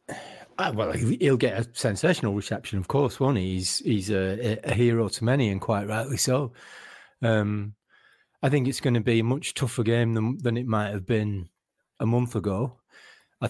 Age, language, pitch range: 40-59, English, 105-120 Hz